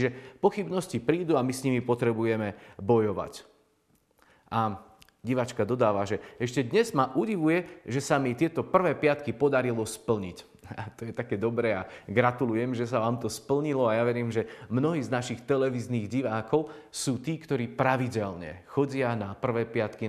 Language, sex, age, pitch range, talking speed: Slovak, male, 40-59, 110-135 Hz, 160 wpm